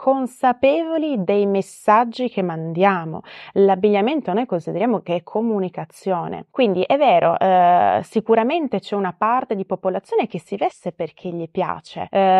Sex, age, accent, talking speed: female, 20-39, native, 135 wpm